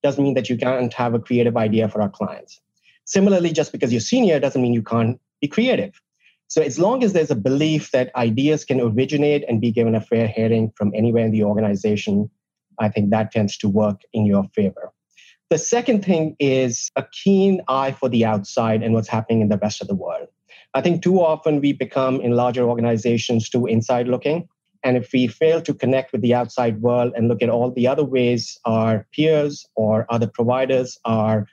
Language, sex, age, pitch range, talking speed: English, male, 30-49, 115-150 Hz, 205 wpm